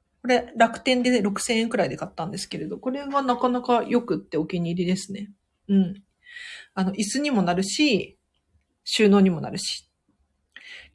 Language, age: Japanese, 40-59